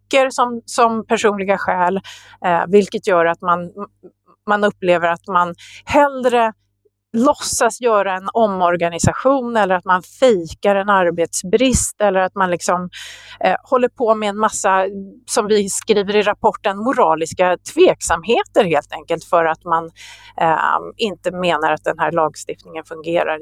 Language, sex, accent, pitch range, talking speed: Swedish, female, native, 175-240 Hz, 140 wpm